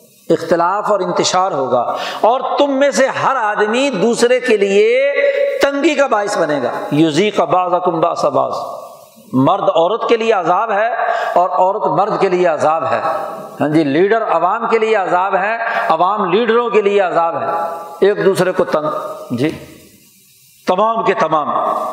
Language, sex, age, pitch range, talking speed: Urdu, male, 50-69, 160-230 Hz, 140 wpm